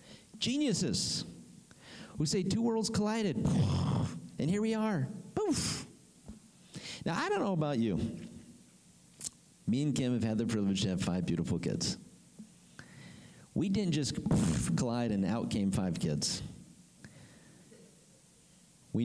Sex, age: male, 50-69